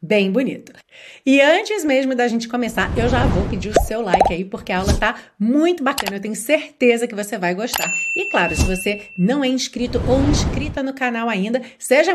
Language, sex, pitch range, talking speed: Portuguese, female, 210-290 Hz, 210 wpm